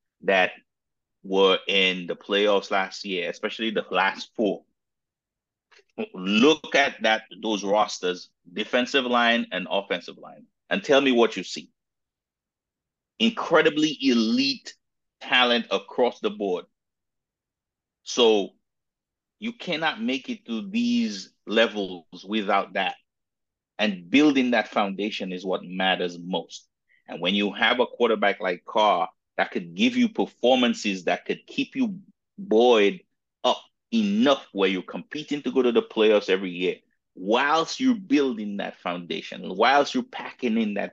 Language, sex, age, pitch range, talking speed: English, male, 30-49, 95-160 Hz, 135 wpm